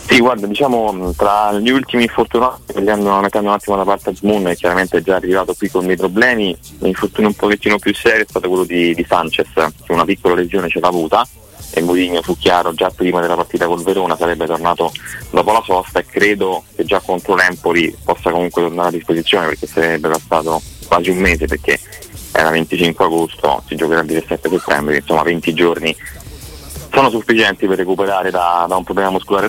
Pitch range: 85-95 Hz